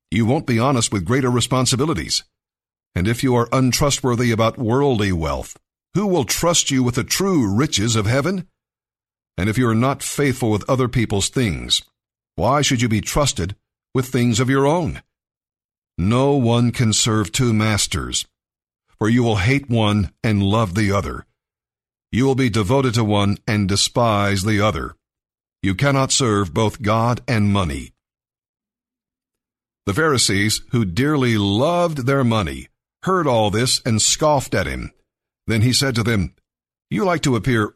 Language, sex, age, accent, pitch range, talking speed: English, male, 50-69, American, 105-135 Hz, 160 wpm